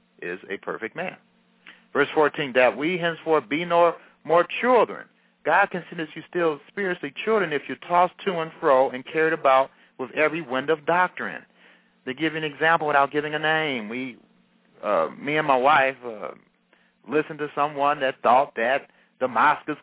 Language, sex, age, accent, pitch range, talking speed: English, male, 60-79, American, 135-165 Hz, 175 wpm